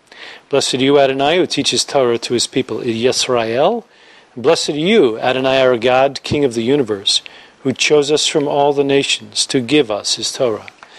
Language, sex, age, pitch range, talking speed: English, male, 50-69, 135-215 Hz, 170 wpm